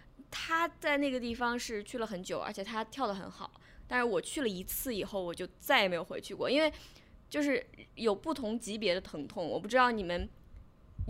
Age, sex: 20-39, female